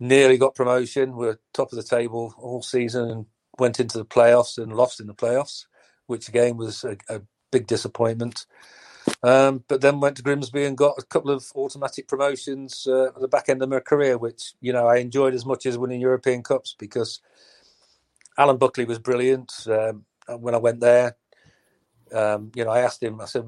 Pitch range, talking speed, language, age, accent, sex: 115-130 Hz, 200 wpm, English, 40-59, British, male